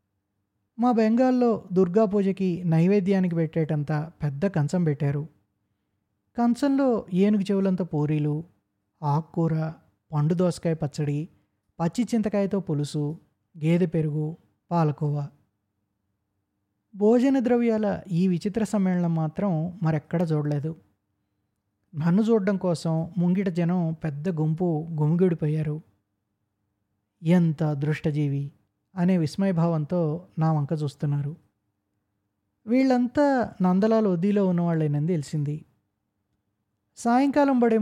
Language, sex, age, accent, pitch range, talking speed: Telugu, male, 20-39, native, 145-185 Hz, 80 wpm